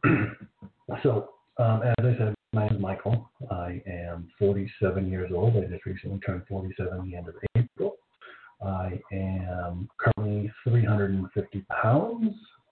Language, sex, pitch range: English, male, 95-115 Hz